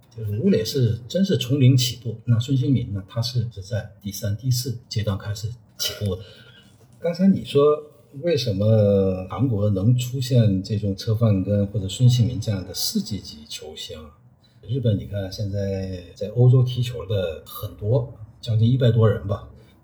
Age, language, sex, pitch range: 50-69, Chinese, male, 105-125 Hz